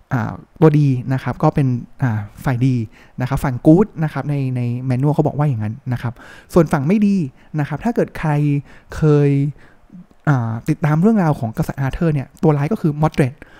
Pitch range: 130-170 Hz